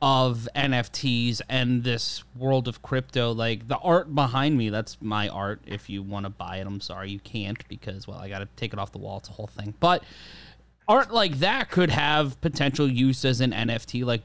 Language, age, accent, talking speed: English, 30-49, American, 215 wpm